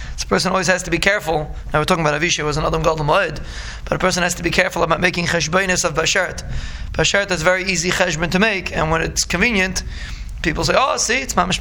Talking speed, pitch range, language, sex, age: 225 wpm, 155-185 Hz, English, male, 20-39